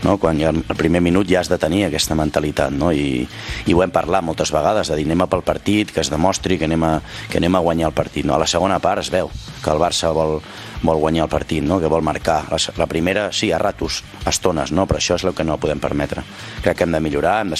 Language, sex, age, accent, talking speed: Spanish, male, 30-49, Spanish, 245 wpm